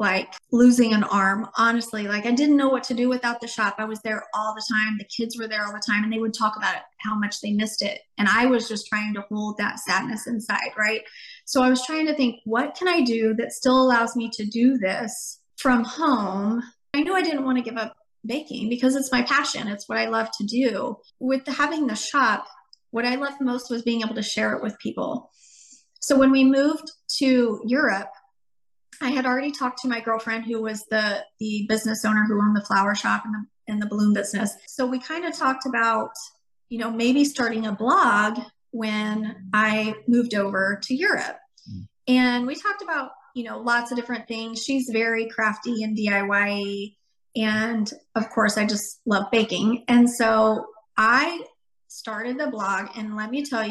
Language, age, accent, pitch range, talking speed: English, 30-49, American, 215-255 Hz, 205 wpm